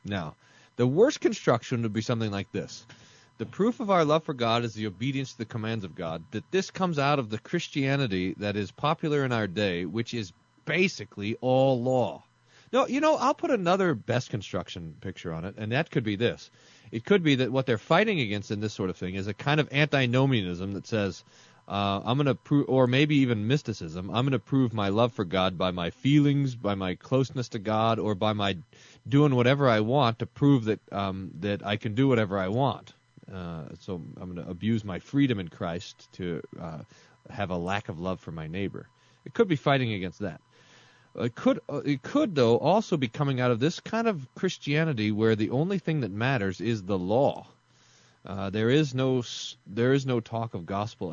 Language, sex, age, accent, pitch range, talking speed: English, male, 30-49, American, 100-145 Hz, 210 wpm